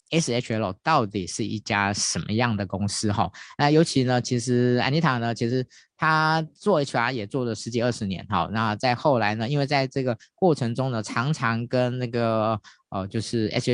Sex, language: male, Chinese